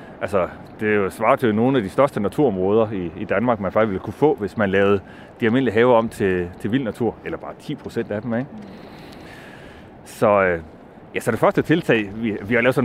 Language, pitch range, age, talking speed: Danish, 100-135 Hz, 30-49, 210 wpm